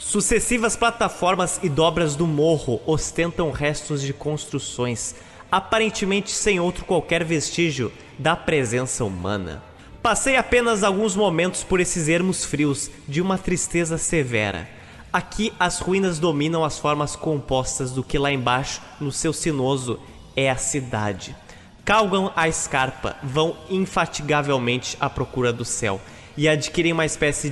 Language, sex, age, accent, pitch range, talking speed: Portuguese, male, 20-39, Brazilian, 120-170 Hz, 130 wpm